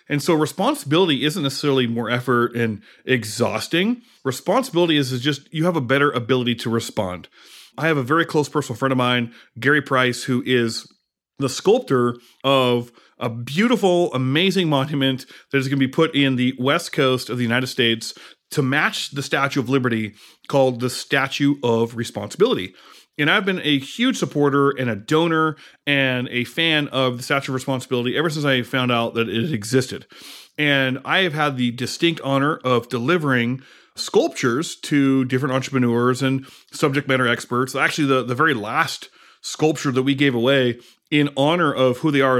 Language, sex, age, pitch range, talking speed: English, male, 30-49, 125-150 Hz, 175 wpm